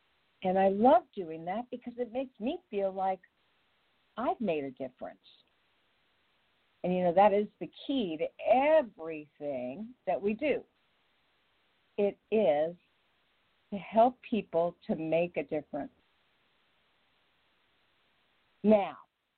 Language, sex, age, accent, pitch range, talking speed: English, female, 50-69, American, 175-255 Hz, 115 wpm